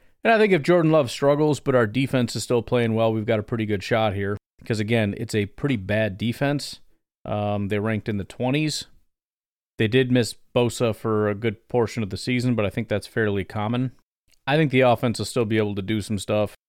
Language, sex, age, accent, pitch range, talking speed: English, male, 40-59, American, 105-135 Hz, 225 wpm